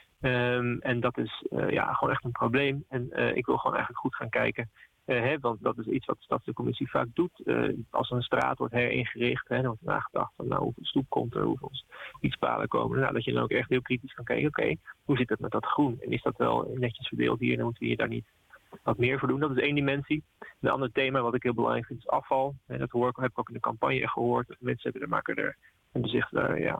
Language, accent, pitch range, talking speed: Dutch, Dutch, 120-130 Hz, 265 wpm